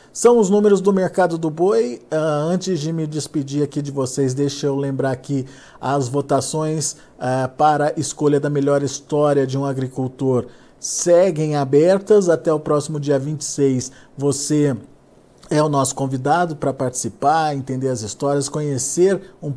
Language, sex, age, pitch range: Portuguese, male, 50-69, 135-175 Hz